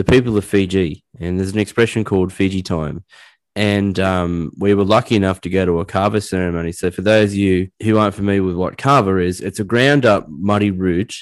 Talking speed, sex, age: 215 wpm, male, 10-29